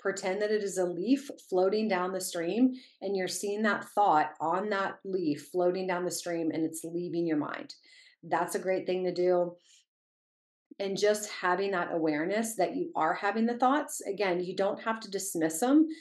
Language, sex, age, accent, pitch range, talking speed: English, female, 30-49, American, 175-210 Hz, 190 wpm